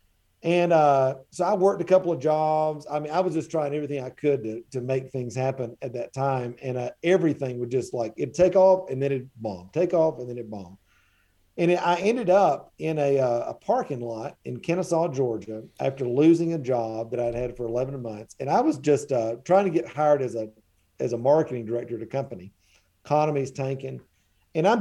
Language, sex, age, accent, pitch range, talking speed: English, male, 50-69, American, 125-170 Hz, 225 wpm